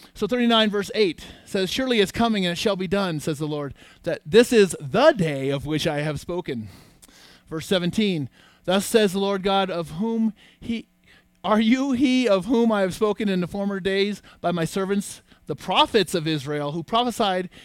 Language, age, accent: English, 30-49, American